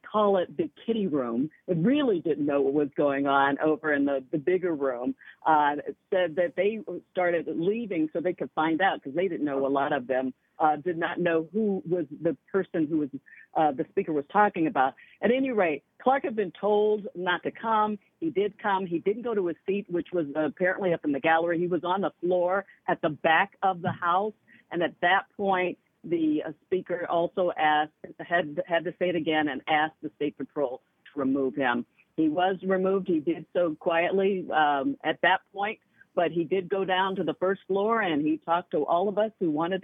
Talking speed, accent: 215 wpm, American